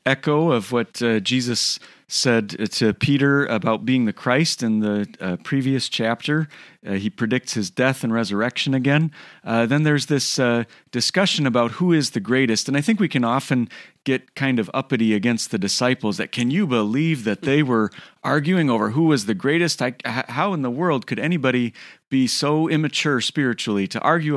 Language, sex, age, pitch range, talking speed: English, male, 40-59, 115-140 Hz, 185 wpm